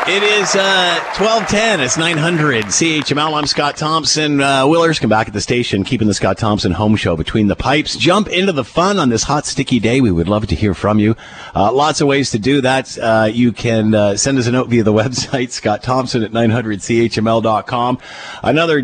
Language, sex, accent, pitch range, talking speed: English, male, American, 95-125 Hz, 205 wpm